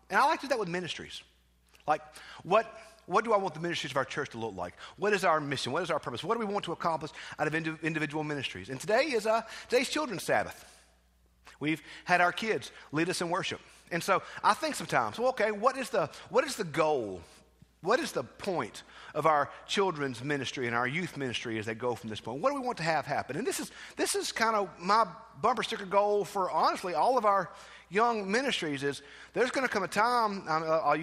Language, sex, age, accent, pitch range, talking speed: English, male, 50-69, American, 140-225 Hz, 235 wpm